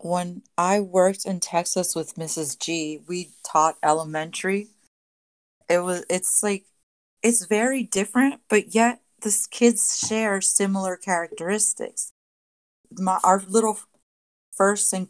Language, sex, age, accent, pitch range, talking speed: English, female, 30-49, American, 160-195 Hz, 120 wpm